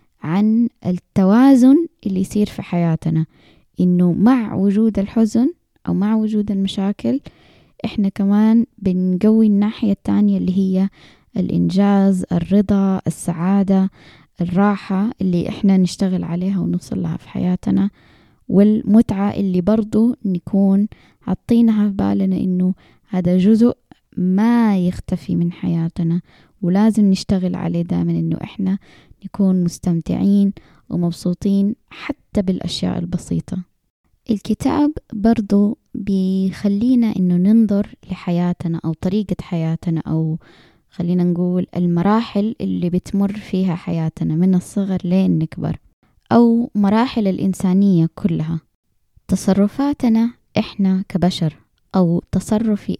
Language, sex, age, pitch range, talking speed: Arabic, female, 20-39, 175-210 Hz, 100 wpm